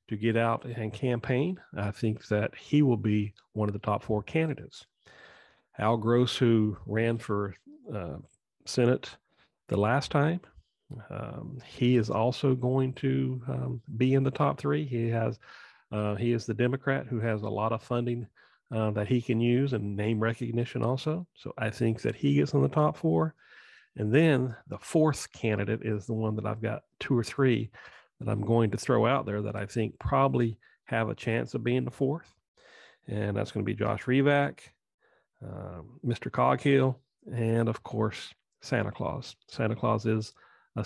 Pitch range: 110-130 Hz